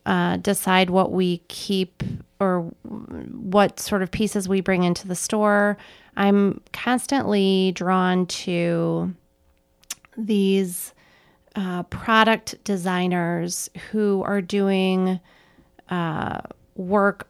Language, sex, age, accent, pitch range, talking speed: English, female, 30-49, American, 180-200 Hz, 95 wpm